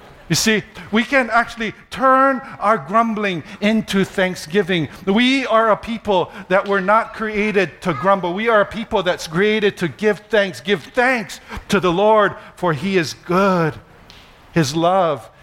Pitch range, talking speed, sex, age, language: 175-250 Hz, 155 wpm, male, 50-69, English